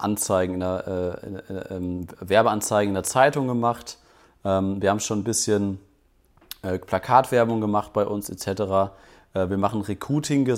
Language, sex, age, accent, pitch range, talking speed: German, male, 30-49, German, 100-120 Hz, 155 wpm